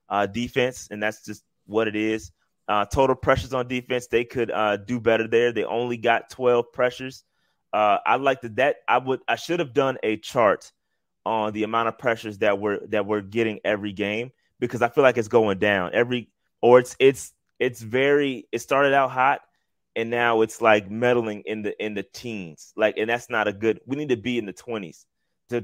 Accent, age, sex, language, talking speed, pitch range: American, 20-39, male, English, 210 wpm, 105-120 Hz